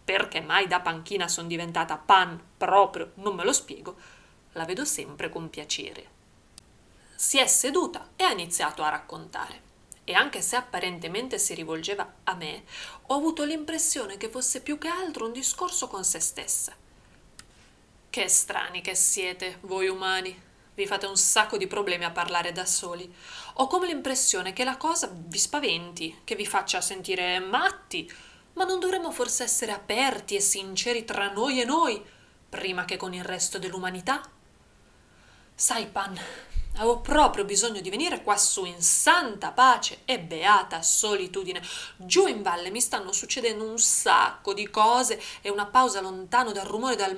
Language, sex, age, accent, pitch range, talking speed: Italian, female, 30-49, native, 185-260 Hz, 160 wpm